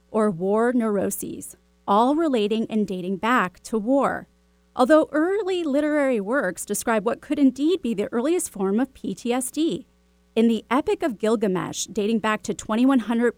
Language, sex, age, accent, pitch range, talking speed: English, female, 30-49, American, 200-285 Hz, 150 wpm